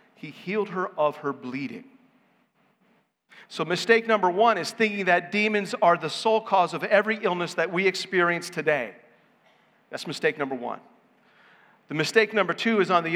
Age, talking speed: 40-59, 165 wpm